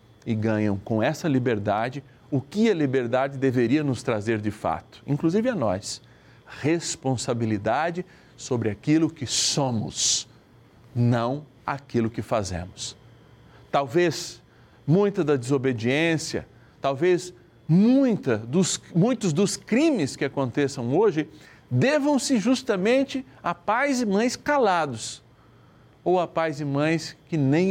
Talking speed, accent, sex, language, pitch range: 110 wpm, Brazilian, male, Portuguese, 115-150 Hz